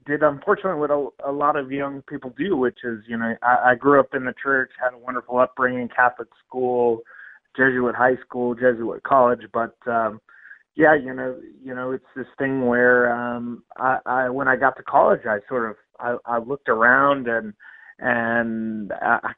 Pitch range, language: 120-135 Hz, English